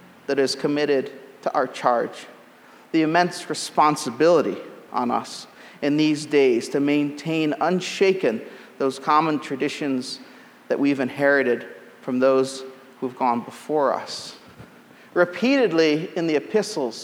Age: 40-59